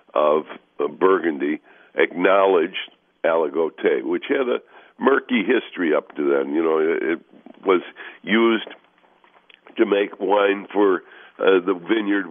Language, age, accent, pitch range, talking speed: English, 60-79, American, 310-415 Hz, 115 wpm